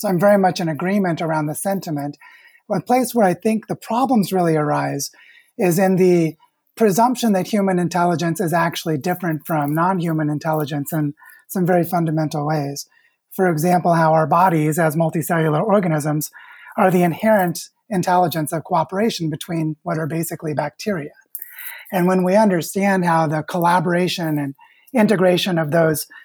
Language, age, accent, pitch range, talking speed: English, 30-49, American, 160-195 Hz, 155 wpm